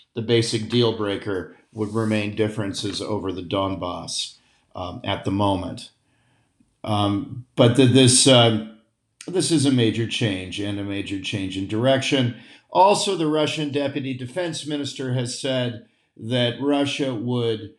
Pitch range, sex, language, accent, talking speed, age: 105-140 Hz, male, English, American, 130 wpm, 50-69